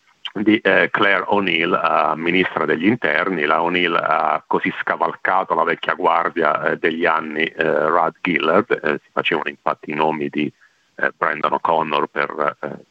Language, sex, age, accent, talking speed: Italian, male, 40-59, native, 160 wpm